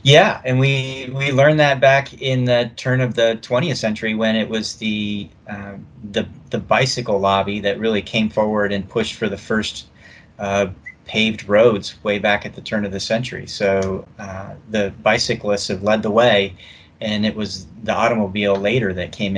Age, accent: 30-49, American